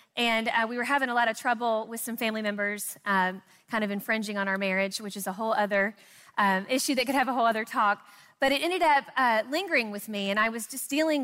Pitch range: 220-265 Hz